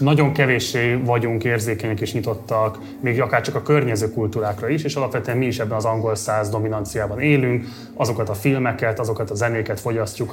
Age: 20-39